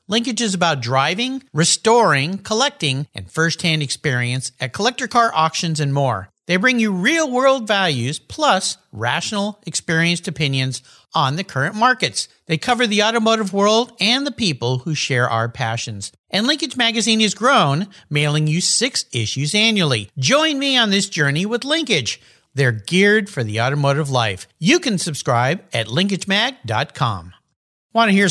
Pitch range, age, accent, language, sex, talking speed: 135-220 Hz, 50-69, American, English, male, 150 wpm